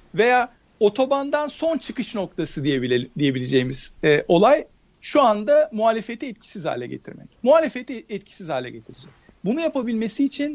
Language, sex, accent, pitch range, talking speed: Turkish, male, native, 185-255 Hz, 130 wpm